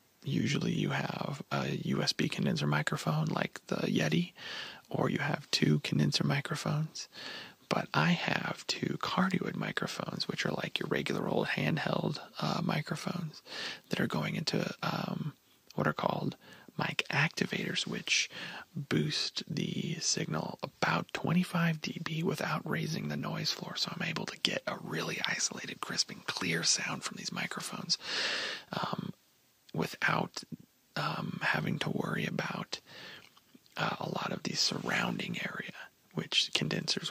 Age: 30-49